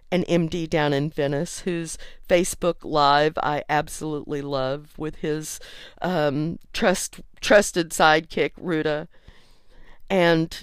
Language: English